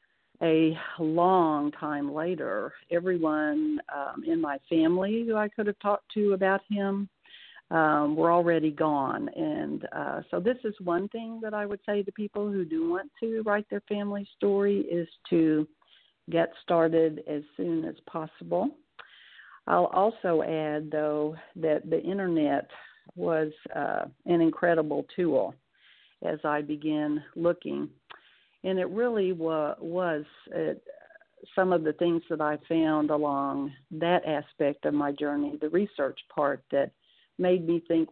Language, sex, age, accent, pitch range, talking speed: English, female, 50-69, American, 155-195 Hz, 140 wpm